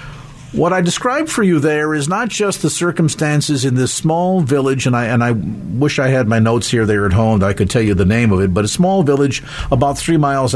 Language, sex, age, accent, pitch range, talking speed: English, male, 50-69, American, 115-150 Hz, 250 wpm